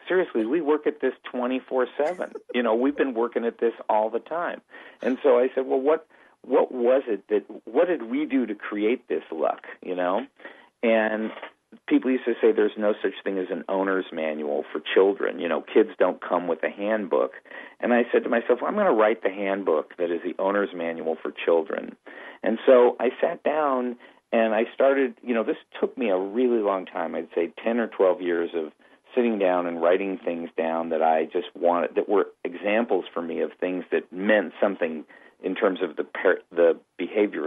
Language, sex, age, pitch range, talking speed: English, male, 50-69, 90-125 Hz, 210 wpm